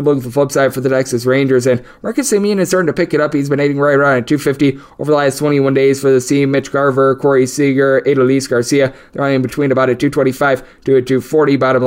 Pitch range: 130-150 Hz